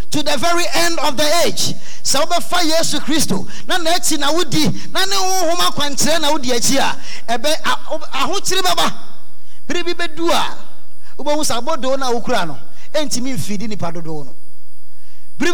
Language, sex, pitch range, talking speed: English, male, 190-315 Hz, 140 wpm